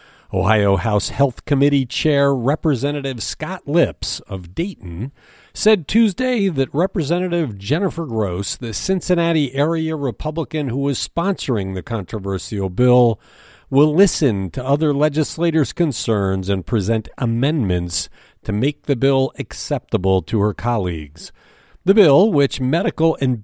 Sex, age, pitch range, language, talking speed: male, 50-69, 105-155 Hz, English, 120 wpm